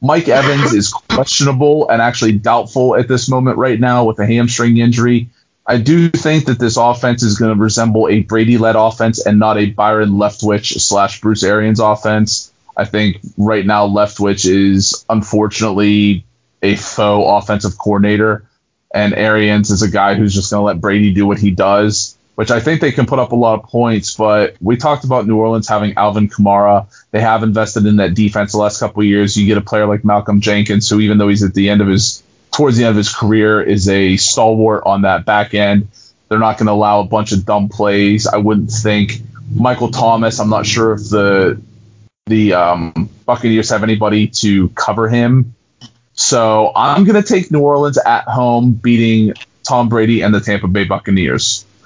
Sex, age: male, 20-39